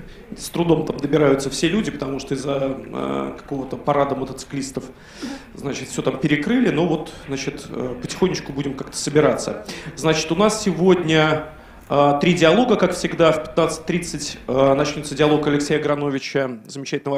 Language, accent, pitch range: Russian, native, 140-160 Hz